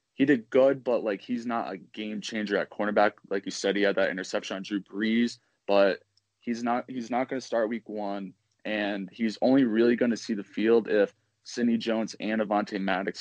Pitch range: 100-120 Hz